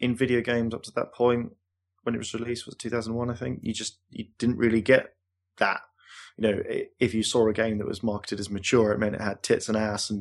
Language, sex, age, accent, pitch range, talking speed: English, male, 20-39, British, 100-120 Hz, 260 wpm